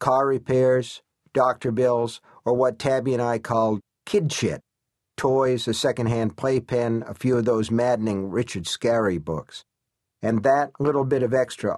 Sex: male